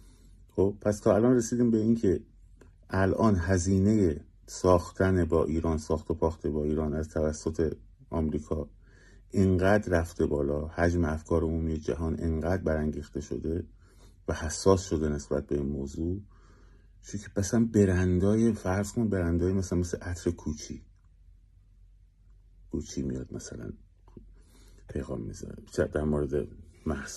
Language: Persian